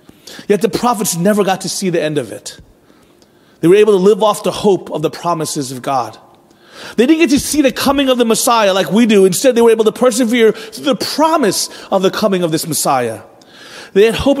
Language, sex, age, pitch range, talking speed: English, male, 30-49, 170-225 Hz, 230 wpm